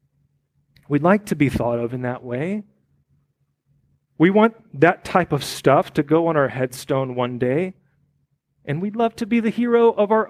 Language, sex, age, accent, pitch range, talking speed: English, male, 30-49, American, 140-180 Hz, 180 wpm